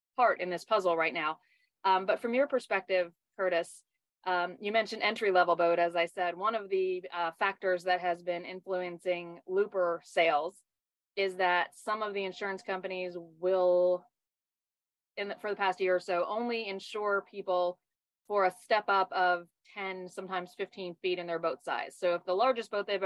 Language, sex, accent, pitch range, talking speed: English, female, American, 175-200 Hz, 175 wpm